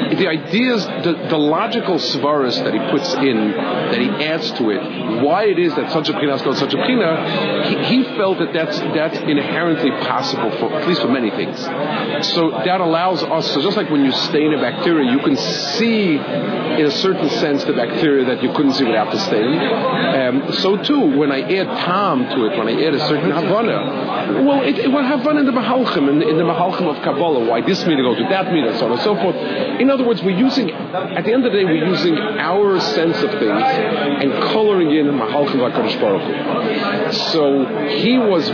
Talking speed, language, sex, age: 215 wpm, English, male, 40-59